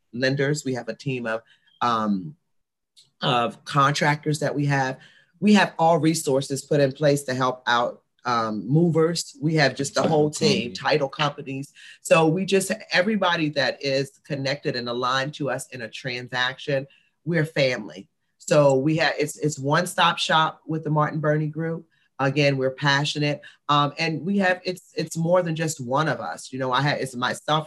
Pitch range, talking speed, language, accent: 135-160 Hz, 180 wpm, English, American